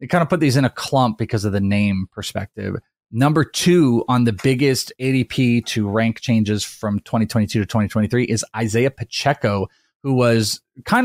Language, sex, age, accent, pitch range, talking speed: English, male, 30-49, American, 110-135 Hz, 175 wpm